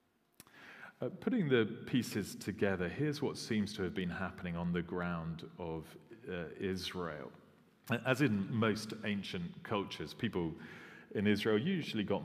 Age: 40-59